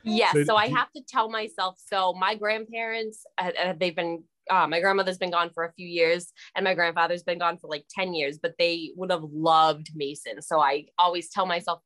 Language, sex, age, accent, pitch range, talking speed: English, female, 10-29, American, 175-230 Hz, 220 wpm